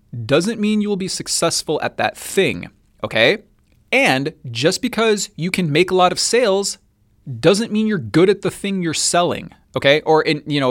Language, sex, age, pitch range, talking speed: English, male, 20-39, 140-205 Hz, 190 wpm